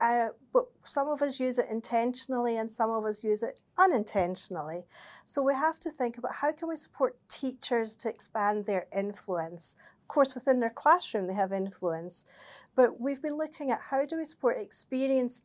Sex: female